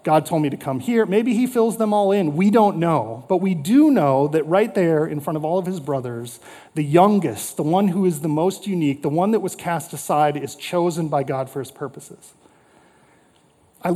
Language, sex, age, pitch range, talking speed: English, male, 30-49, 155-205 Hz, 225 wpm